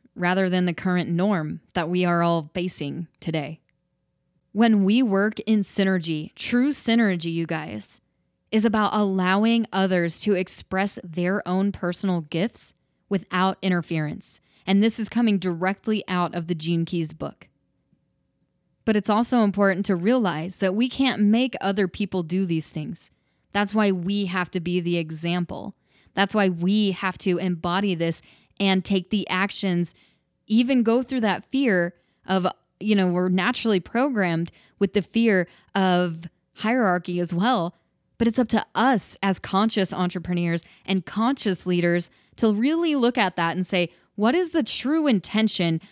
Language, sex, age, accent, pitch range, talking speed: English, female, 20-39, American, 175-210 Hz, 155 wpm